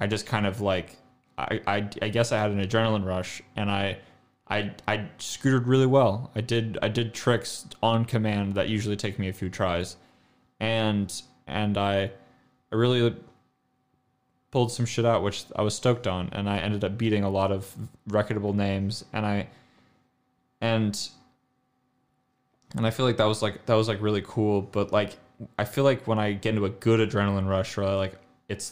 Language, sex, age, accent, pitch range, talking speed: English, male, 20-39, American, 95-115 Hz, 185 wpm